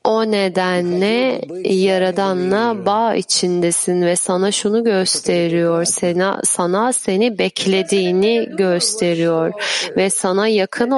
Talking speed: 95 wpm